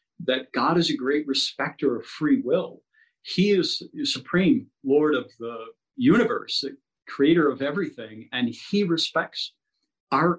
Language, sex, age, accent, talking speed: English, male, 50-69, American, 135 wpm